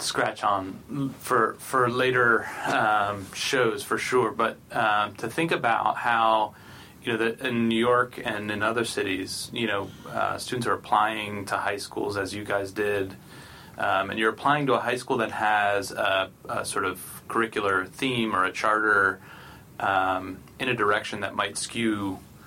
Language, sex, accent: English, male, American